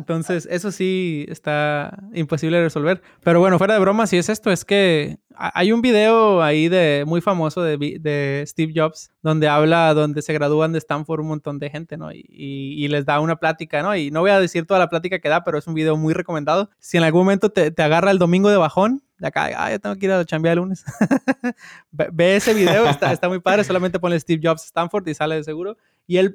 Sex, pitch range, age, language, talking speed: male, 160-195 Hz, 20-39, Spanish, 240 wpm